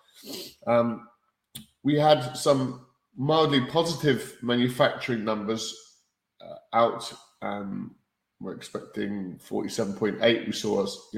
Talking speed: 95 wpm